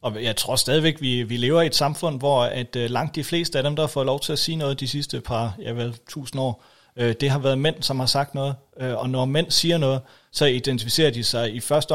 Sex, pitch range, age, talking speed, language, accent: male, 115-145 Hz, 40-59, 245 wpm, Danish, native